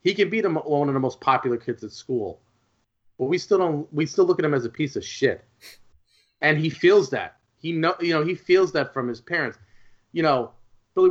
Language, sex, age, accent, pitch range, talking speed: English, male, 30-49, American, 115-150 Hz, 230 wpm